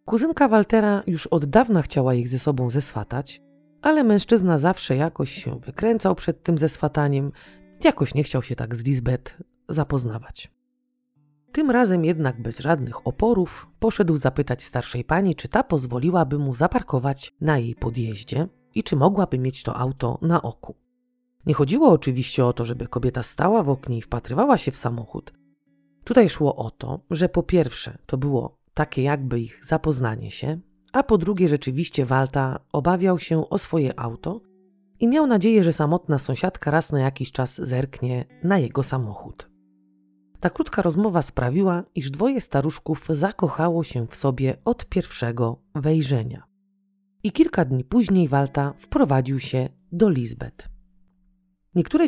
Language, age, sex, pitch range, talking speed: Polish, 30-49, female, 130-185 Hz, 150 wpm